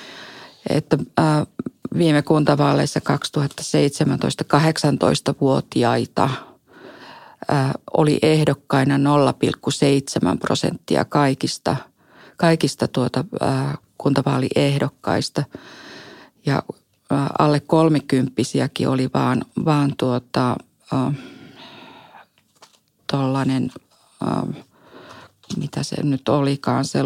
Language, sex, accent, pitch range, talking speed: Finnish, female, native, 135-155 Hz, 55 wpm